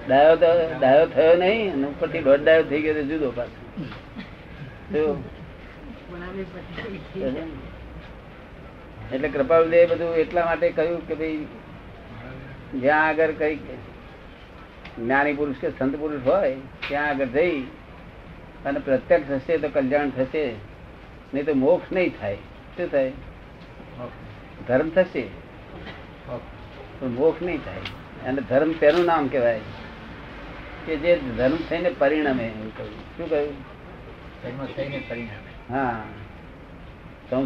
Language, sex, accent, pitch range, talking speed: Gujarati, male, native, 130-165 Hz, 60 wpm